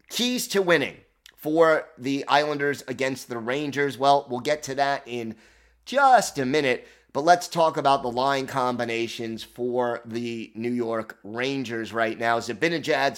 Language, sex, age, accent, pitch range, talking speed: English, male, 30-49, American, 120-145 Hz, 150 wpm